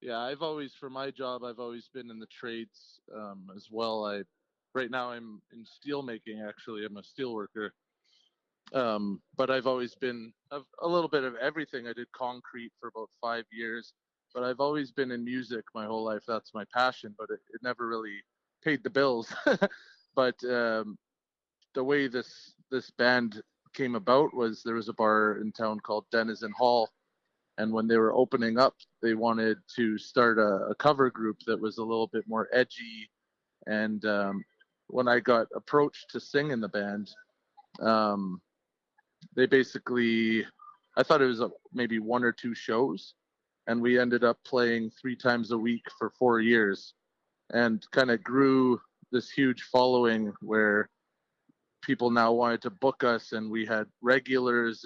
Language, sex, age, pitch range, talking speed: English, male, 20-39, 110-125 Hz, 170 wpm